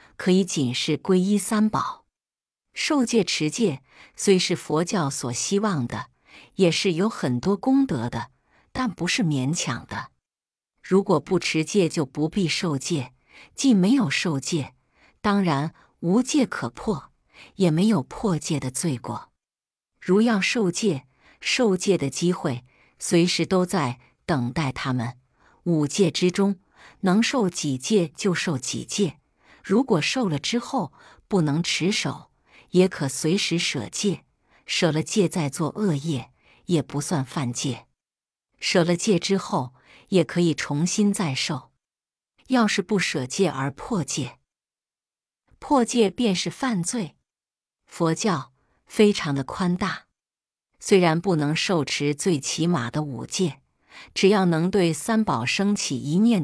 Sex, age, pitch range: female, 50-69, 145-200 Hz